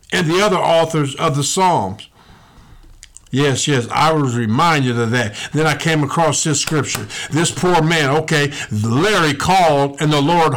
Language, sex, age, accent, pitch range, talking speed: English, male, 60-79, American, 145-200 Hz, 165 wpm